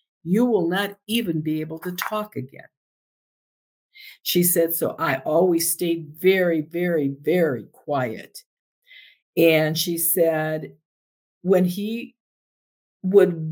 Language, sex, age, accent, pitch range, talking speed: English, female, 50-69, American, 160-200 Hz, 110 wpm